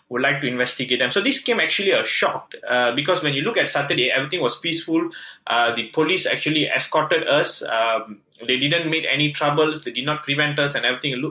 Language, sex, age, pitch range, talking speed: English, male, 20-39, 125-170 Hz, 210 wpm